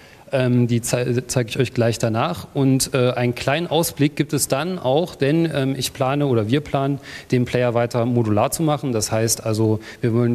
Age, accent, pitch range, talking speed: 40-59, German, 115-140 Hz, 180 wpm